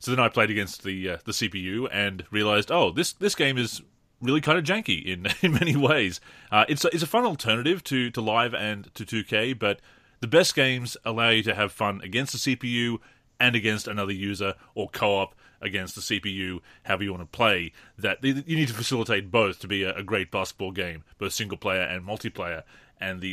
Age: 30-49